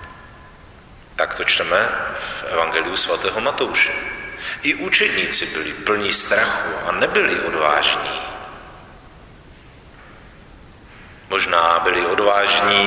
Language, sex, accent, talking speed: Czech, male, native, 85 wpm